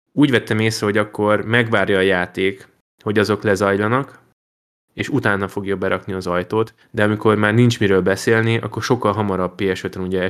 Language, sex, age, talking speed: Hungarian, male, 20-39, 170 wpm